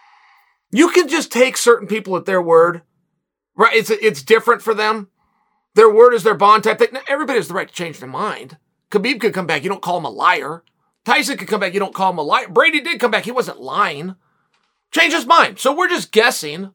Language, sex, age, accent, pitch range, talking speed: English, male, 40-59, American, 205-265 Hz, 235 wpm